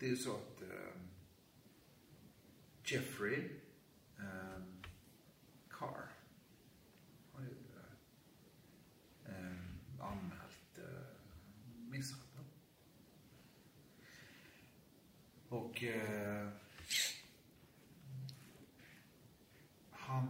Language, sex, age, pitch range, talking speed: Swedish, male, 60-79, 95-130 Hz, 50 wpm